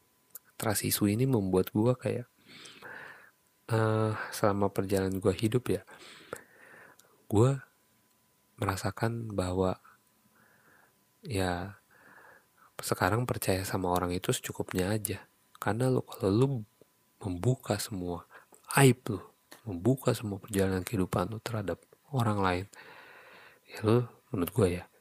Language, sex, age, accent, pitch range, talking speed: Indonesian, male, 30-49, native, 95-125 Hz, 105 wpm